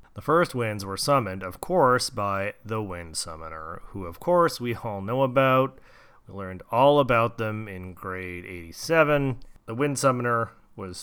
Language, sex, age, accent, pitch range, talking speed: English, male, 30-49, American, 95-130 Hz, 165 wpm